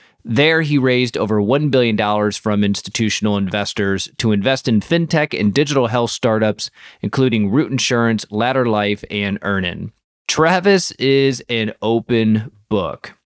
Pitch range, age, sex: 105-140 Hz, 30-49, male